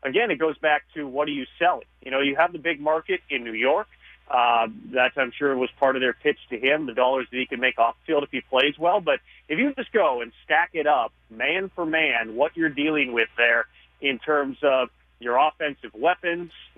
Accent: American